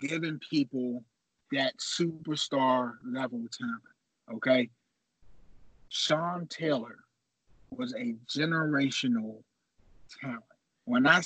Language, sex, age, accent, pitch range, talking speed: English, male, 30-49, American, 130-180 Hz, 80 wpm